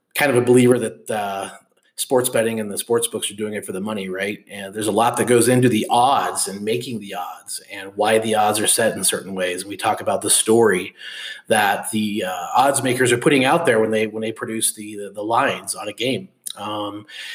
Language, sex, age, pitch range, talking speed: English, male, 30-49, 105-125 Hz, 230 wpm